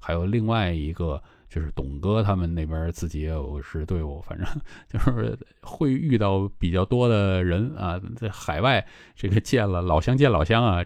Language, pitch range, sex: Chinese, 80-110 Hz, male